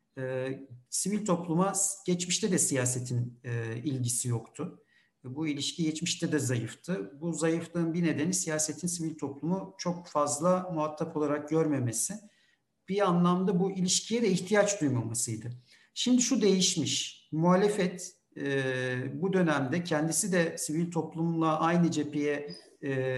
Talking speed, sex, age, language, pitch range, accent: 120 wpm, male, 60-79, Turkish, 125-180 Hz, native